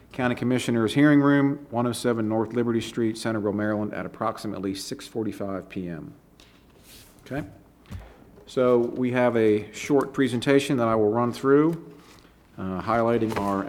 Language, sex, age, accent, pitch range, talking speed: English, male, 40-59, American, 105-125 Hz, 125 wpm